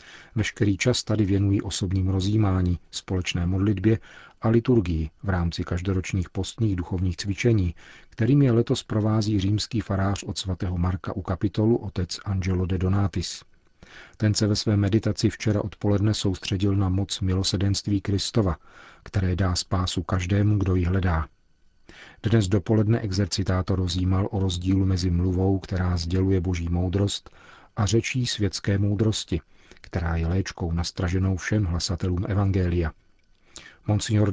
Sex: male